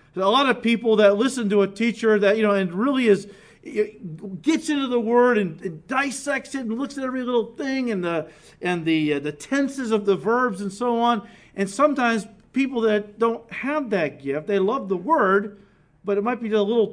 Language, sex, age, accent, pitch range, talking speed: English, male, 50-69, American, 165-235 Hz, 215 wpm